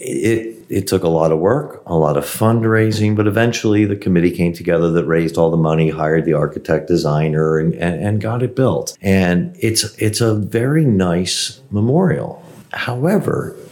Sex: male